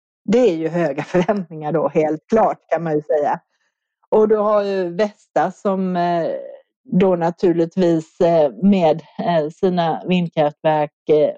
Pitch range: 155-210 Hz